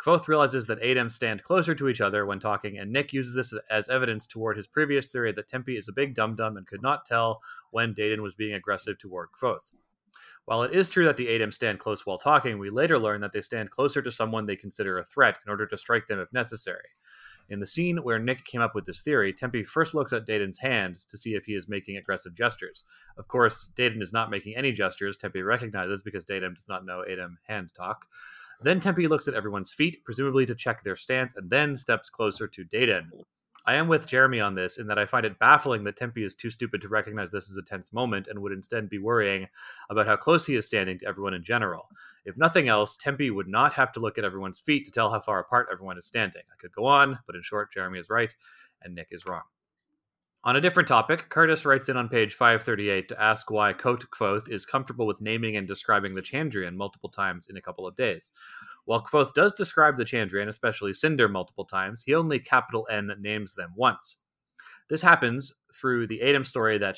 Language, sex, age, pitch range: English, male, 30-49, 100-130 Hz